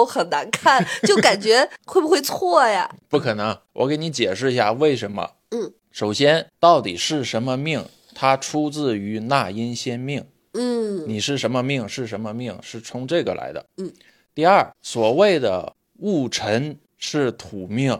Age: 20-39